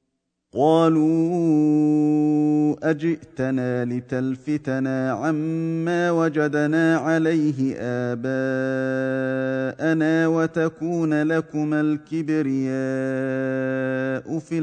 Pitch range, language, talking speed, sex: 130-160 Hz, Arabic, 45 wpm, male